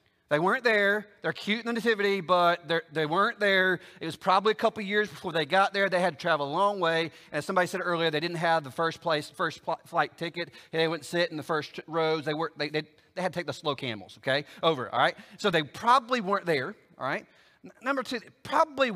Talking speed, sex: 255 wpm, male